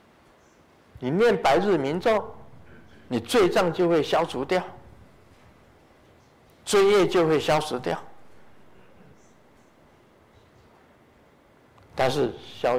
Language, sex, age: Chinese, male, 50-69